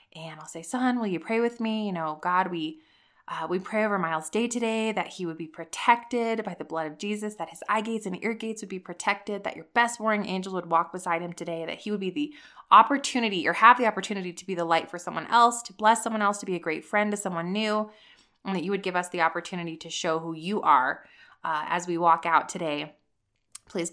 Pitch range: 165-215 Hz